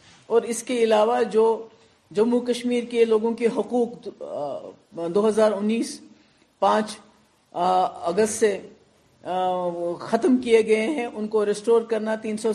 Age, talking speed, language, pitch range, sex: 50-69, 135 wpm, Urdu, 215-270 Hz, female